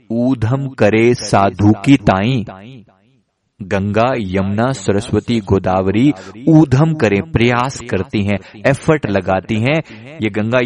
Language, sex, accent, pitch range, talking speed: Hindi, male, native, 105-145 Hz, 105 wpm